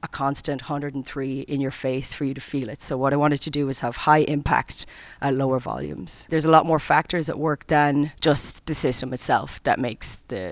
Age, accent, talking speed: 30-49, Irish, 220 wpm